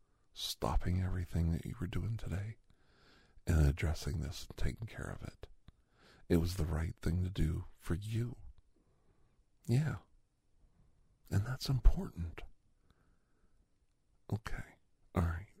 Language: English